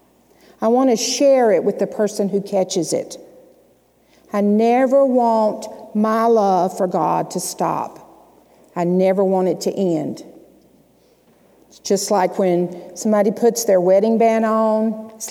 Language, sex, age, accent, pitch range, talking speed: English, female, 50-69, American, 185-250 Hz, 145 wpm